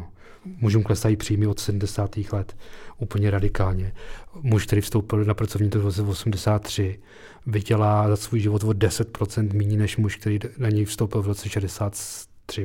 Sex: male